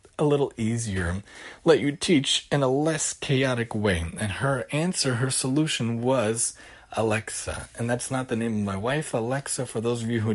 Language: English